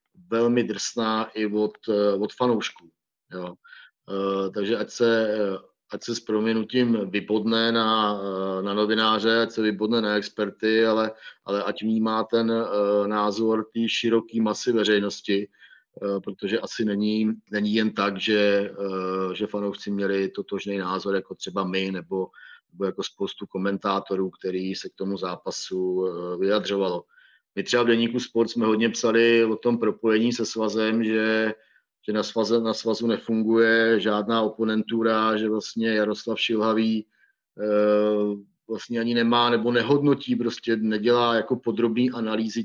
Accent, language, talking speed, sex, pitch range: native, Czech, 130 wpm, male, 100-115 Hz